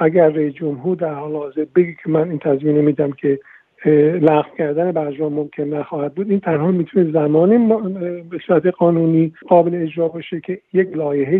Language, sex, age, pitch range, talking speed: Persian, male, 50-69, 150-180 Hz, 170 wpm